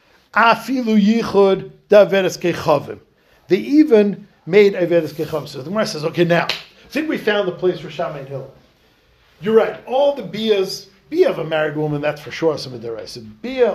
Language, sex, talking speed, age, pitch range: English, male, 160 wpm, 50-69, 160-220 Hz